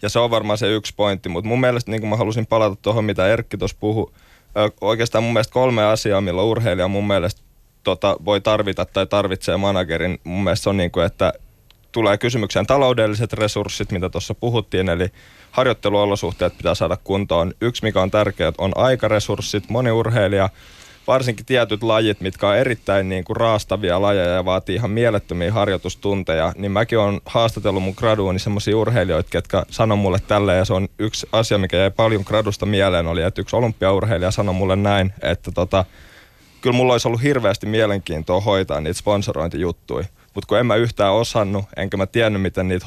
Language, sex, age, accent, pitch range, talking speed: Finnish, male, 20-39, native, 95-110 Hz, 180 wpm